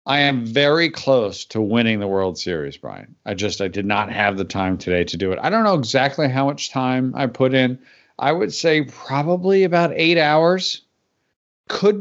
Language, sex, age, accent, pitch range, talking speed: English, male, 40-59, American, 100-135 Hz, 200 wpm